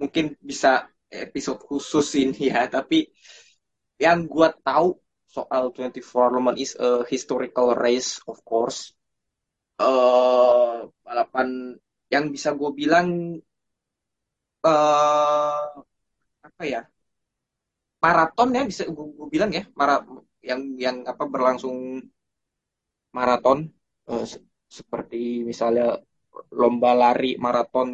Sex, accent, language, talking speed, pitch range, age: male, native, Indonesian, 100 wpm, 125-150 Hz, 20-39